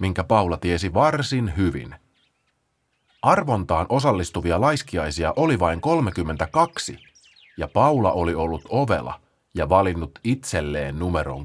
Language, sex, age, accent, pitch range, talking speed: Finnish, male, 30-49, native, 85-140 Hz, 105 wpm